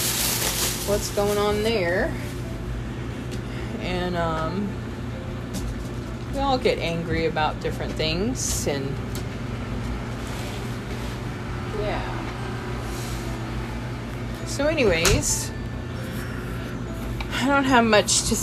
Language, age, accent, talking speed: English, 20-39, American, 70 wpm